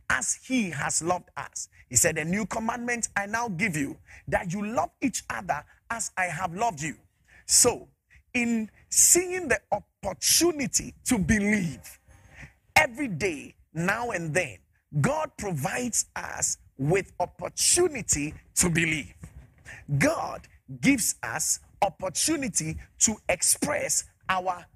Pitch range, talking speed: 165-245 Hz, 120 wpm